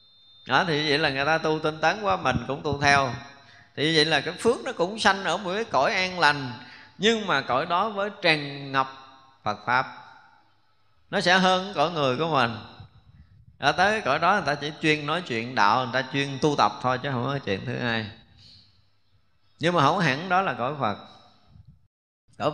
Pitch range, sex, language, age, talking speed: 120-165 Hz, male, Vietnamese, 20-39, 200 wpm